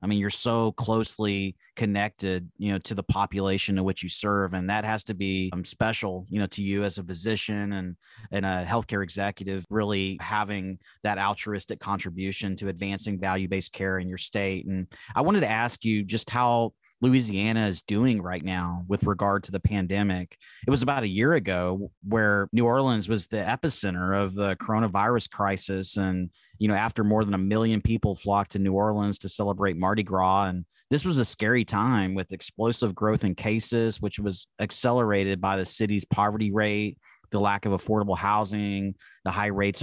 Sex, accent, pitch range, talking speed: male, American, 95-110 Hz, 190 wpm